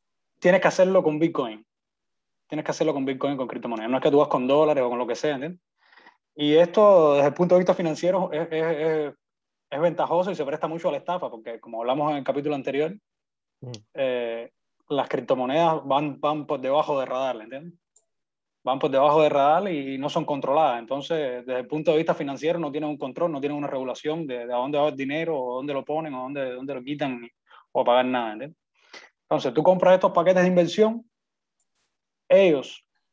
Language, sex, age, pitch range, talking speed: Spanish, male, 20-39, 135-175 Hz, 210 wpm